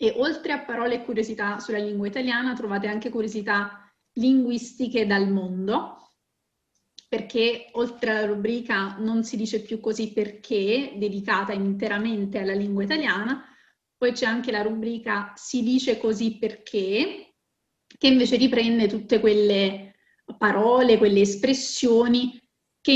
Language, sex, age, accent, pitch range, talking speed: Italian, female, 30-49, native, 205-240 Hz, 125 wpm